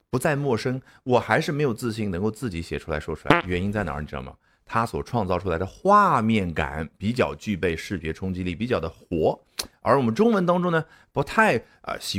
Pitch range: 90-145 Hz